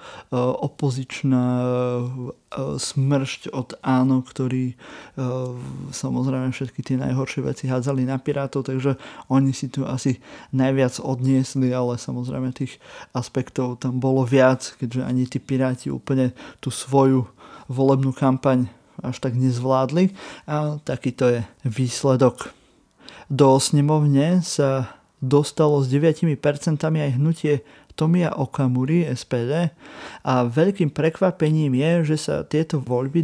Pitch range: 130-150 Hz